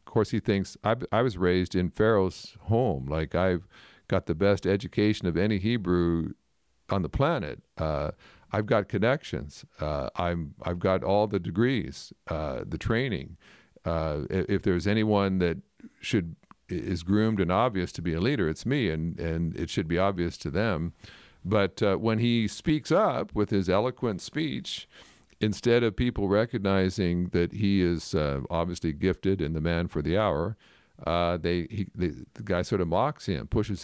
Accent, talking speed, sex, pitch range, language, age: American, 175 wpm, male, 85-105 Hz, English, 50-69